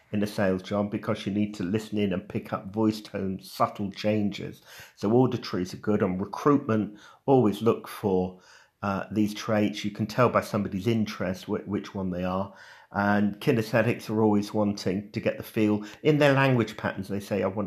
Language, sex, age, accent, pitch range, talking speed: English, male, 50-69, British, 95-110 Hz, 190 wpm